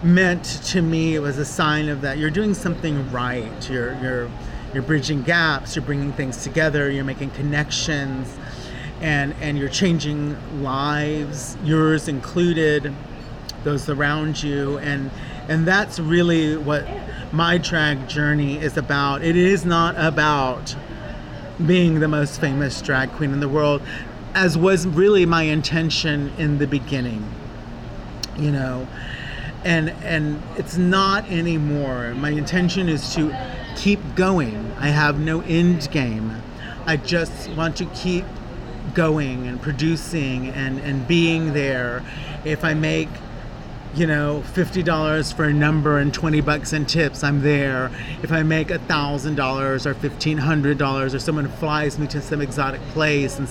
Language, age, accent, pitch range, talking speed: English, 40-59, American, 140-160 Hz, 140 wpm